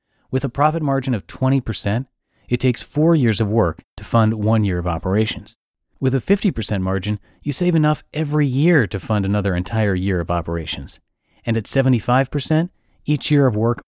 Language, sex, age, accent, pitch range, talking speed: English, male, 30-49, American, 100-130 Hz, 175 wpm